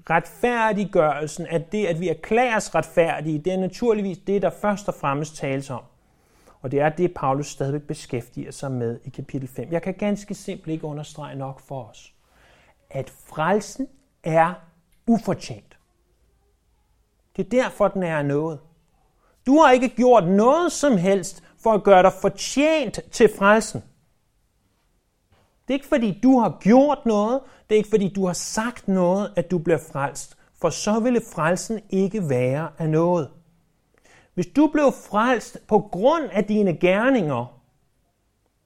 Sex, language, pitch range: male, Danish, 150-210 Hz